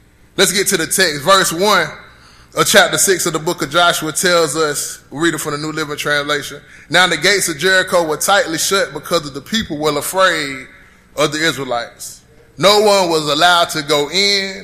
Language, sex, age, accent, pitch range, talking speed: English, male, 20-39, American, 160-200 Hz, 200 wpm